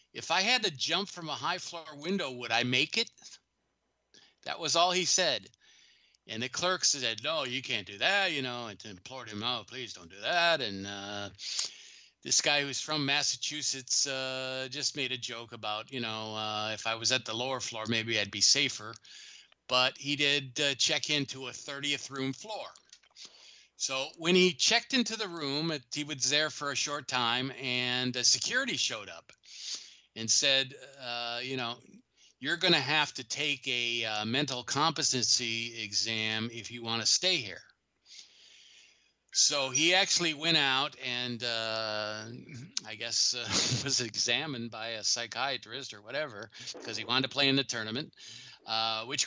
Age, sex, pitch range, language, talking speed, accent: 50-69, male, 110-145 Hz, English, 175 wpm, American